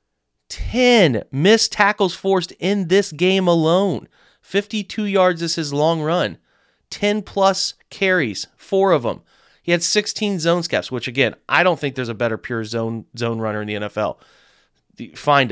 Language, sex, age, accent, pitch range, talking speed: English, male, 30-49, American, 115-155 Hz, 160 wpm